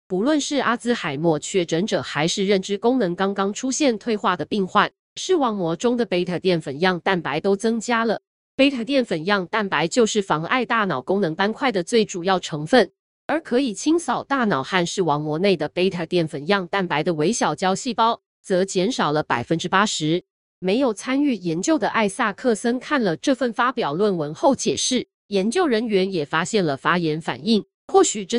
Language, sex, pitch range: Chinese, female, 180-245 Hz